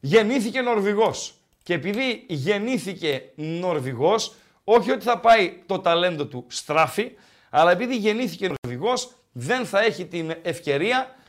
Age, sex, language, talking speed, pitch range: 50-69, male, Greek, 120 wpm, 155-230 Hz